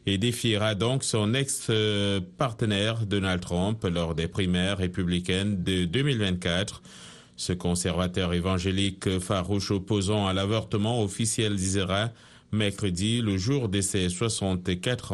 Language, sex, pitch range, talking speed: French, male, 90-110 Hz, 110 wpm